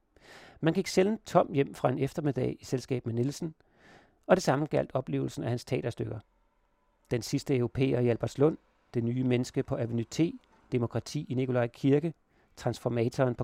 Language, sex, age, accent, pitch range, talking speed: Danish, male, 40-59, native, 125-150 Hz, 165 wpm